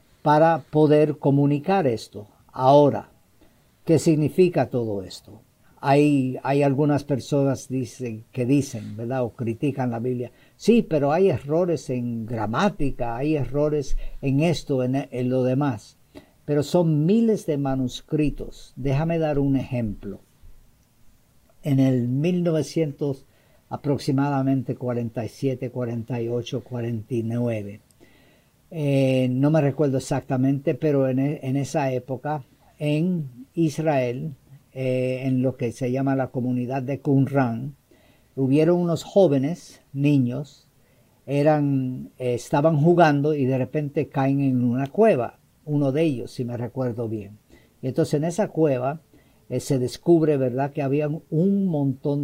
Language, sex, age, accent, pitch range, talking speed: Spanish, female, 50-69, American, 125-150 Hz, 125 wpm